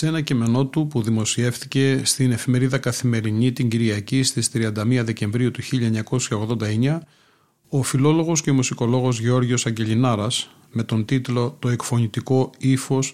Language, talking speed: Greek, 135 wpm